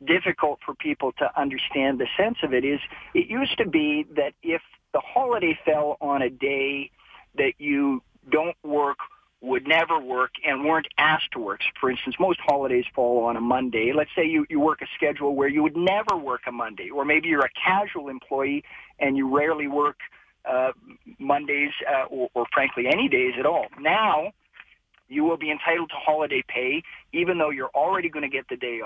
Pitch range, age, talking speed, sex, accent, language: 130-170 Hz, 50-69, 195 wpm, male, American, English